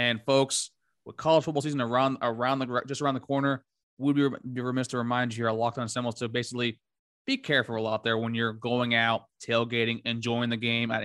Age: 20-39